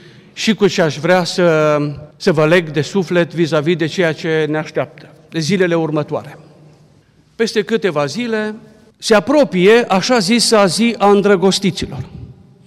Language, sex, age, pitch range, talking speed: Romanian, male, 50-69, 175-215 Hz, 145 wpm